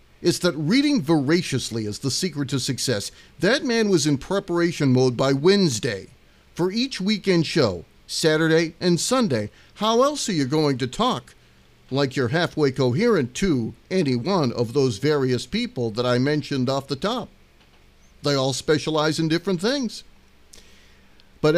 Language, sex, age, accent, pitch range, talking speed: English, male, 50-69, American, 120-180 Hz, 155 wpm